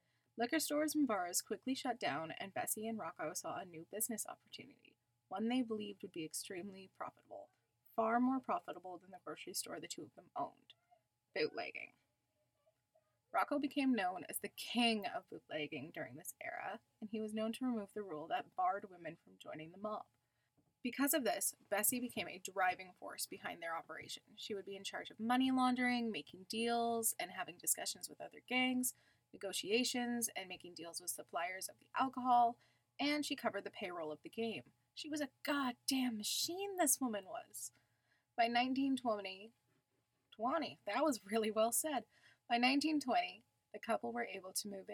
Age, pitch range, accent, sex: 20-39, 190-260 Hz, American, female